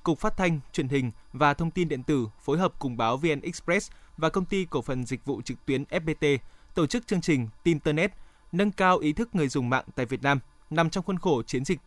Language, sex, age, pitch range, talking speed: Vietnamese, male, 20-39, 140-180 Hz, 245 wpm